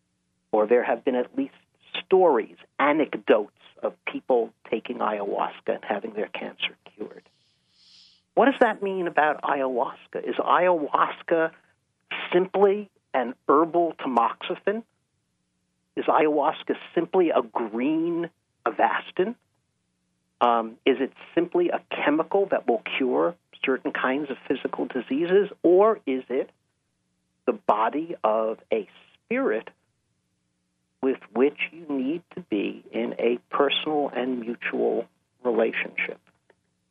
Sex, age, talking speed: male, 50-69, 110 wpm